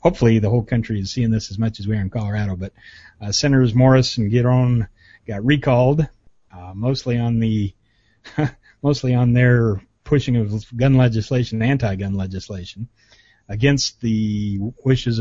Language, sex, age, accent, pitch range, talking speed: English, male, 40-59, American, 105-125 Hz, 150 wpm